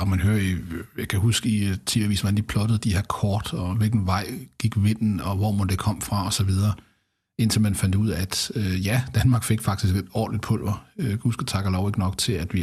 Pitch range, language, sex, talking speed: 95-115 Hz, Danish, male, 250 wpm